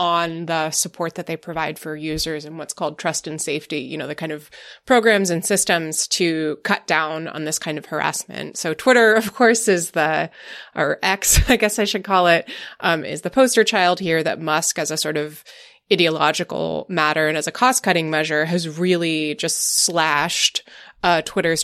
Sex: female